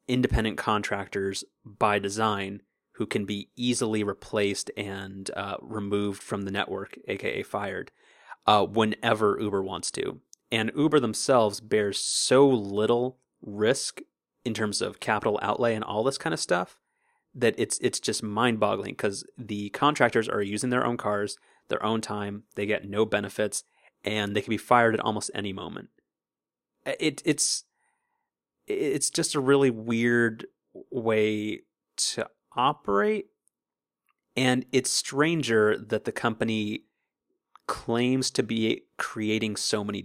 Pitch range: 105-130 Hz